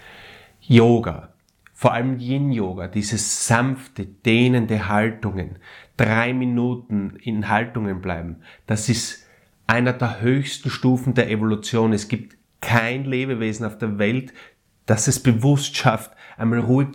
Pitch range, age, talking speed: 100-125 Hz, 30-49, 120 wpm